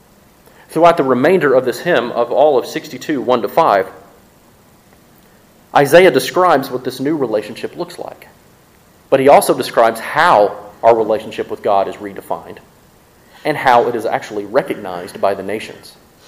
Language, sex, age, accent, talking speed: English, male, 40-59, American, 150 wpm